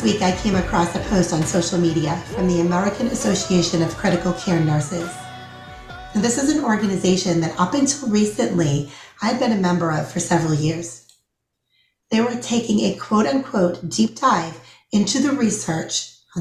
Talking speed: 165 wpm